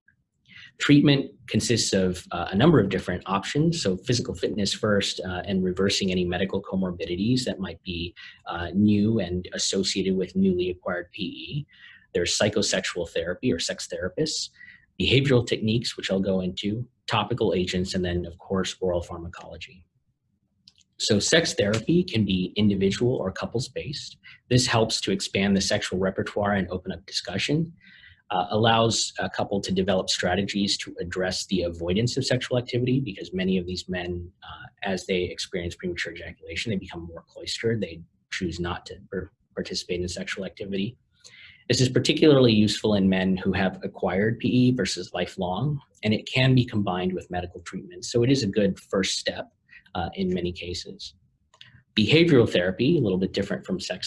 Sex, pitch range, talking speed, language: male, 90-125 Hz, 160 wpm, English